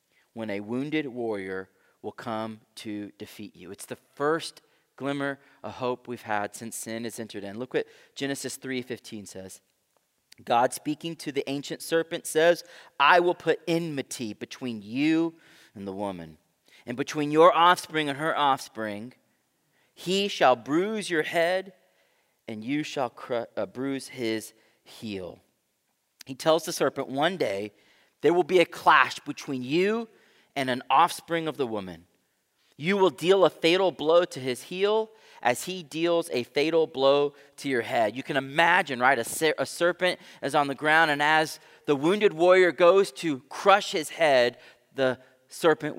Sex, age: male, 30-49